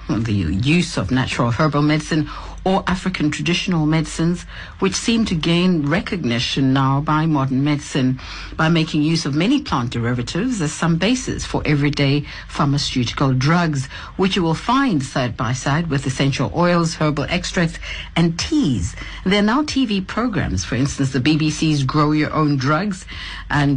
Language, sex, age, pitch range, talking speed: English, female, 60-79, 135-175 Hz, 155 wpm